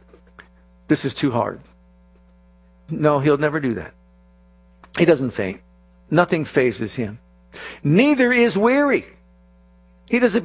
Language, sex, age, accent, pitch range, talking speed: English, male, 50-69, American, 120-190 Hz, 115 wpm